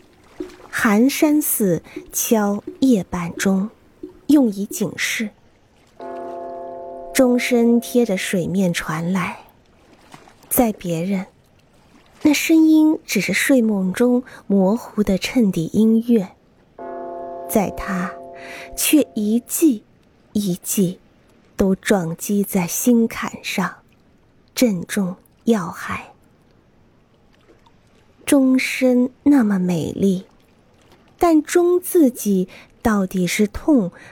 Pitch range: 180-260 Hz